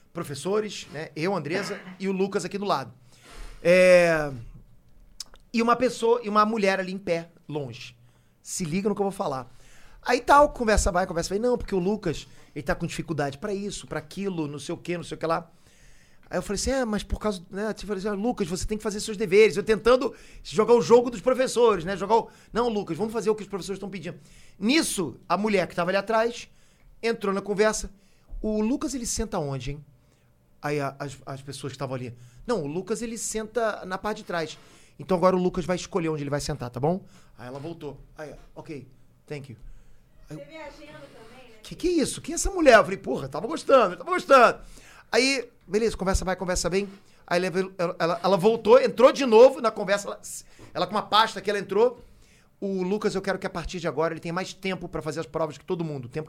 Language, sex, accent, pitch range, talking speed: Portuguese, male, Brazilian, 155-215 Hz, 220 wpm